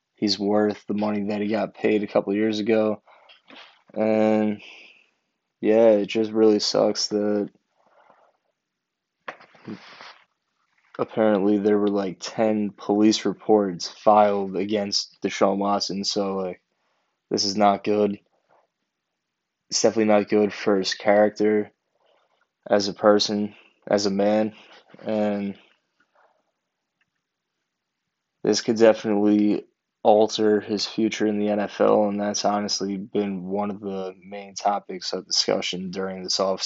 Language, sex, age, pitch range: English, male, 20-39, 100-110 Hz